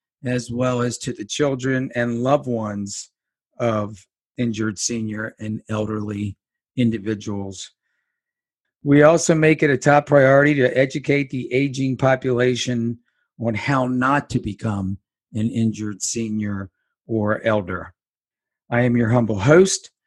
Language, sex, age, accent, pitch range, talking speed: English, male, 50-69, American, 110-140 Hz, 125 wpm